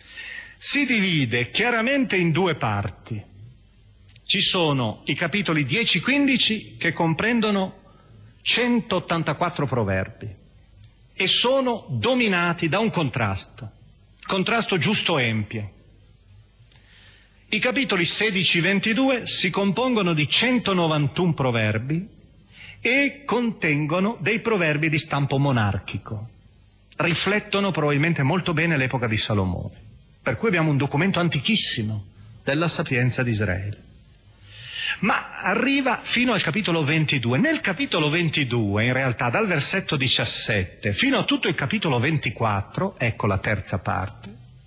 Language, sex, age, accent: Italian, male, 40-59, native